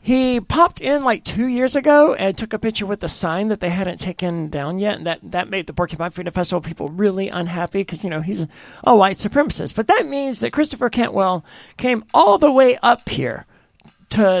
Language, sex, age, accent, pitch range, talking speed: English, male, 40-59, American, 175-240 Hz, 215 wpm